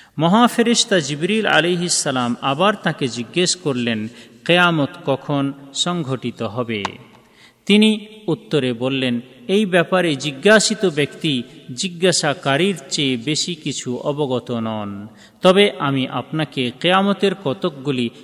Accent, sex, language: native, male, Bengali